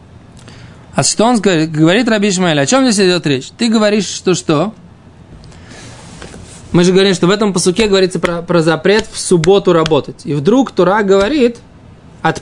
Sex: male